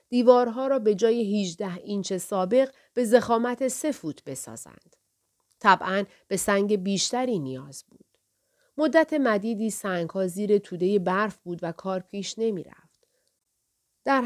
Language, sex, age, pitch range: Persian, female, 40-59, 180-240 Hz